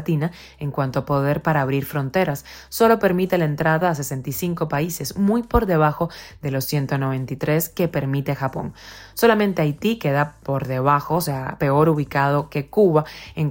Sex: female